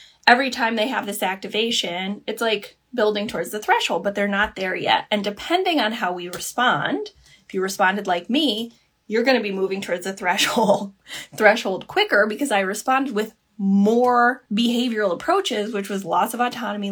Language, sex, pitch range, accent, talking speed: English, female, 200-250 Hz, American, 175 wpm